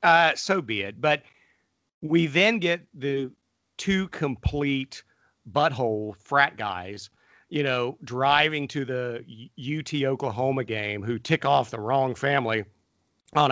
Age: 50-69